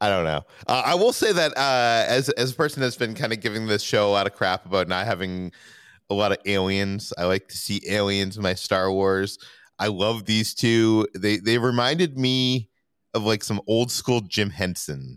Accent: American